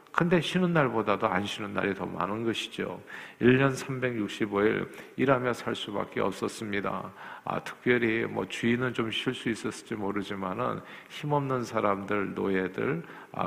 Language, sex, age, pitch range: Korean, male, 50-69, 105-135 Hz